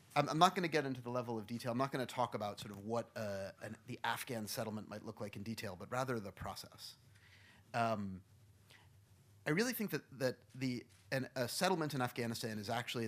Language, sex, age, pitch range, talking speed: English, male, 30-49, 105-130 Hz, 220 wpm